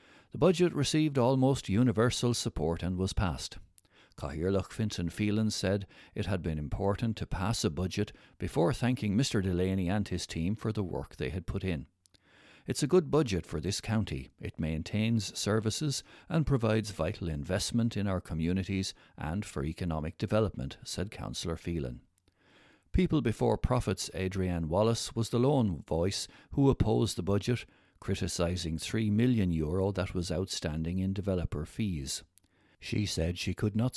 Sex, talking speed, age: male, 150 wpm, 60-79